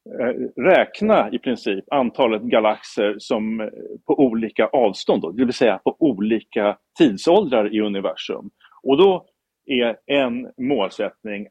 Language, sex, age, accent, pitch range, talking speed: English, male, 40-59, Norwegian, 105-140 Hz, 120 wpm